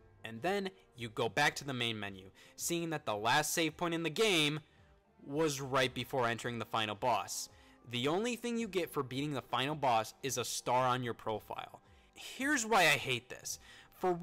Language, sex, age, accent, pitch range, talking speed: English, male, 20-39, American, 115-165 Hz, 200 wpm